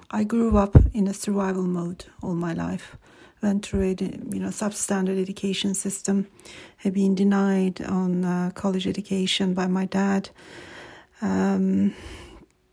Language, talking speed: English, 135 wpm